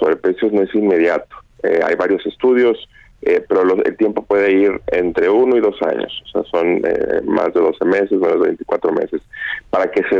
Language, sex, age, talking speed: Spanish, male, 30-49, 205 wpm